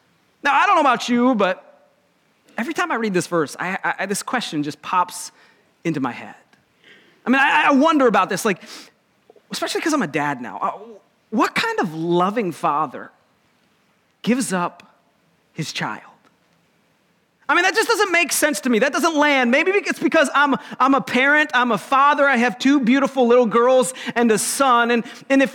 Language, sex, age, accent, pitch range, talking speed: English, male, 40-59, American, 215-295 Hz, 180 wpm